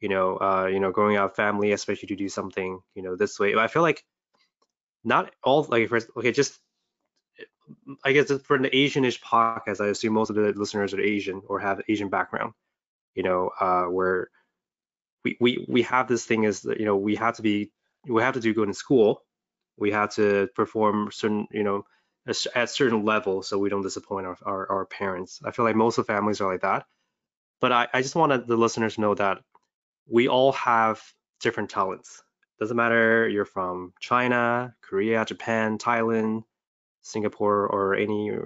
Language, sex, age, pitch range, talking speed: English, male, 20-39, 100-115 Hz, 195 wpm